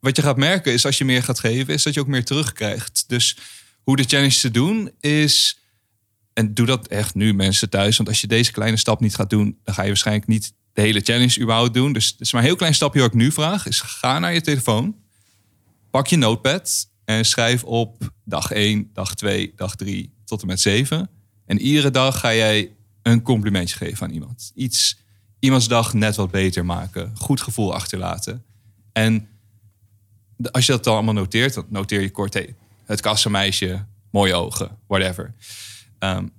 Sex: male